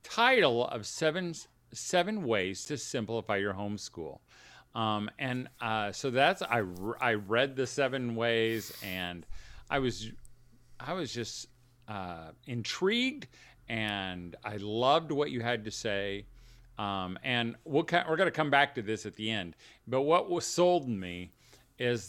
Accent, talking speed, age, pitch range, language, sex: American, 150 wpm, 40-59, 100-125 Hz, English, male